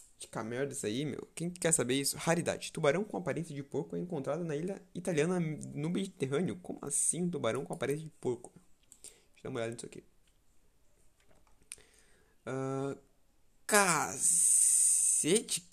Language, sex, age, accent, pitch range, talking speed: Portuguese, male, 20-39, Brazilian, 125-180 Hz, 150 wpm